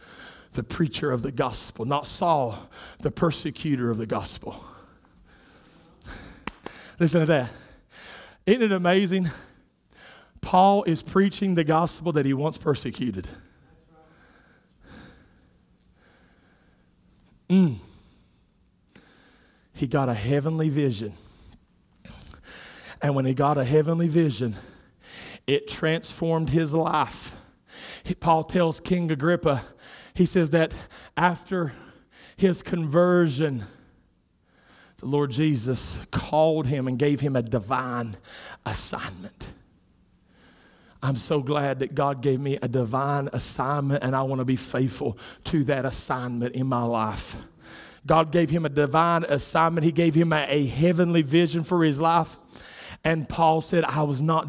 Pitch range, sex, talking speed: 130-165 Hz, male, 120 wpm